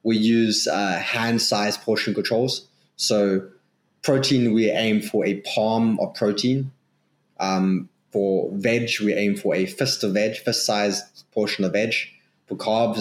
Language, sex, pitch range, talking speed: English, male, 100-125 Hz, 145 wpm